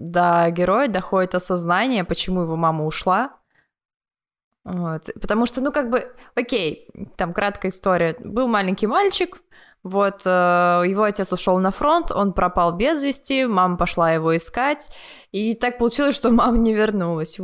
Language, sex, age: Russian, female, 20-39